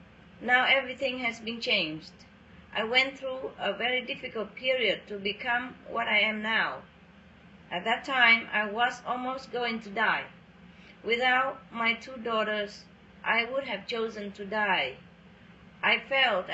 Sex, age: female, 40-59